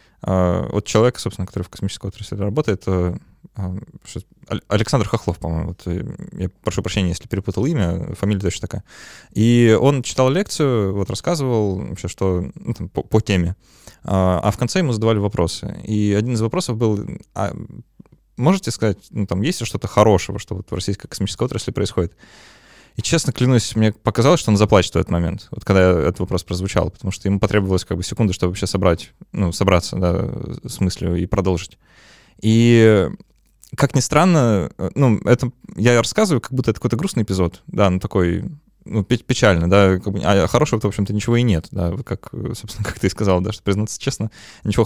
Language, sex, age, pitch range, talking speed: Russian, male, 20-39, 95-120 Hz, 175 wpm